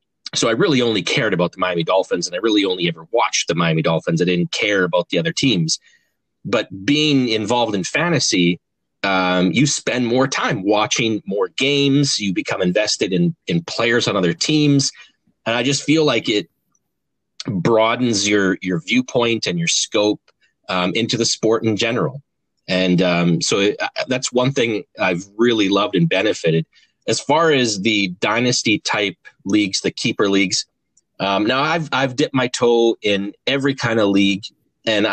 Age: 30-49